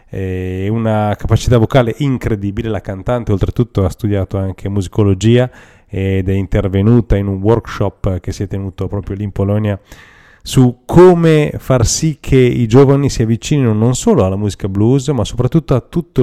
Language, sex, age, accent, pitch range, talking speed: Italian, male, 30-49, native, 95-130 Hz, 165 wpm